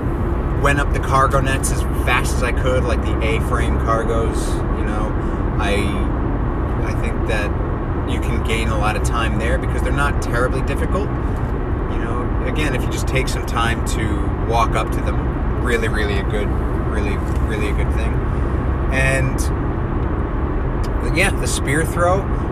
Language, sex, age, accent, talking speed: English, male, 30-49, American, 165 wpm